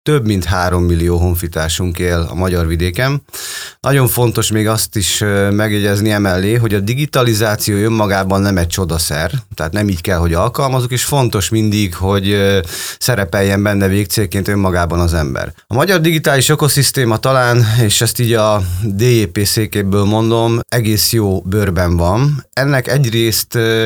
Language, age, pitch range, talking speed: Hungarian, 30-49, 95-115 Hz, 145 wpm